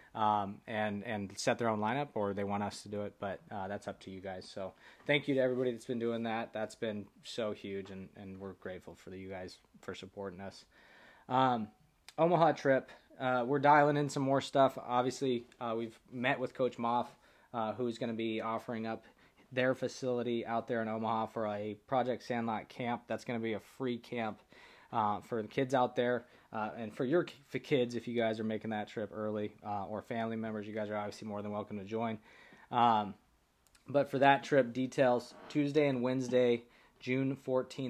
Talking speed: 205 wpm